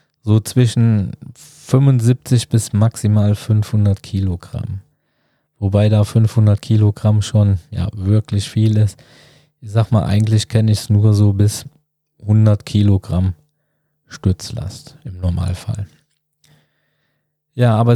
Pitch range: 110-140 Hz